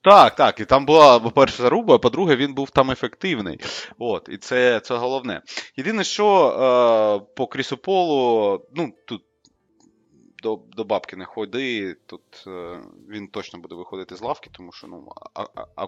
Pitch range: 100-130 Hz